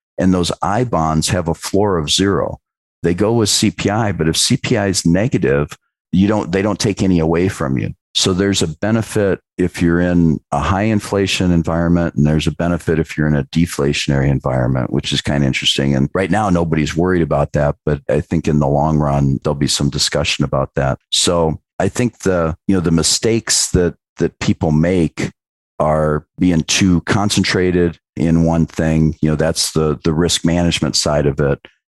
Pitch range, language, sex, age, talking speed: 75-90 Hz, English, male, 40-59, 195 wpm